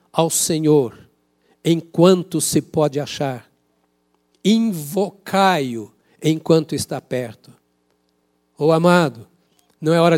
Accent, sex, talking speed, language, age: Brazilian, male, 90 wpm, Portuguese, 60-79